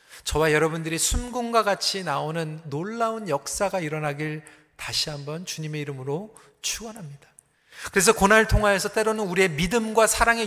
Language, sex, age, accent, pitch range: Korean, male, 40-59, native, 155-215 Hz